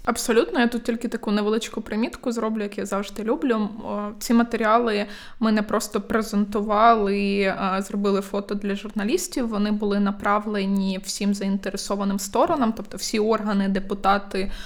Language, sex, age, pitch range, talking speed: Ukrainian, female, 20-39, 200-230 Hz, 135 wpm